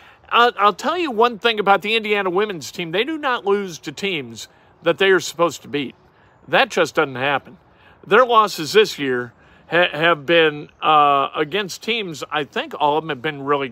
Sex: male